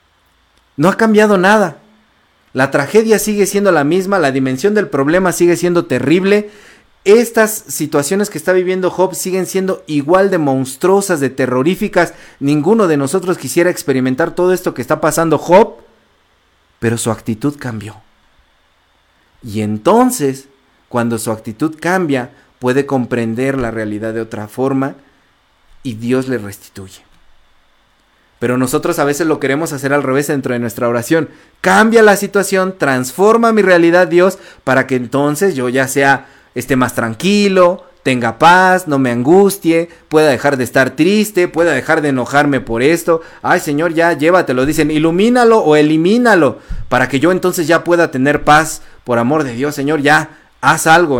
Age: 40-59